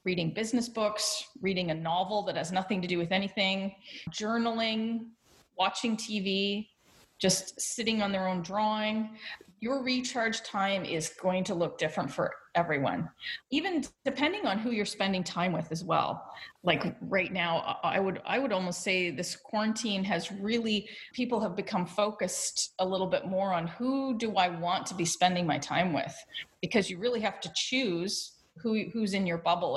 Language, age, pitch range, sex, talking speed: English, 30-49, 180-225 Hz, female, 170 wpm